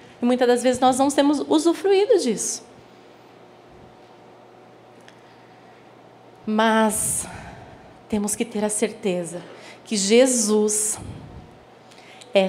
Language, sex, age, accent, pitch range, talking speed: Portuguese, female, 20-39, Brazilian, 225-275 Hz, 85 wpm